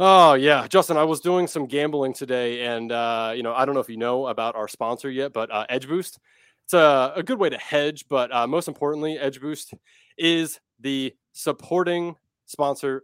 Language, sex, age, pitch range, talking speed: English, male, 20-39, 125-160 Hz, 195 wpm